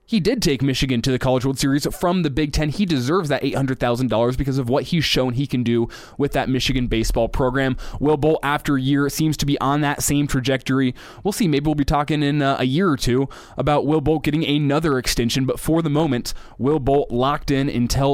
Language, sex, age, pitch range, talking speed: English, male, 20-39, 130-155 Hz, 225 wpm